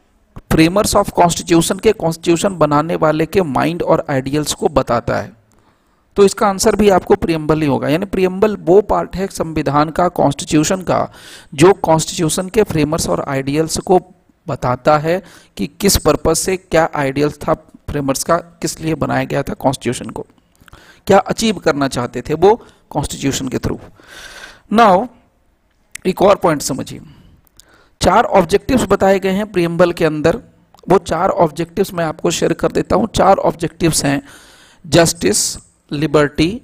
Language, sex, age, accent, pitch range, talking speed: Hindi, male, 40-59, native, 150-195 Hz, 150 wpm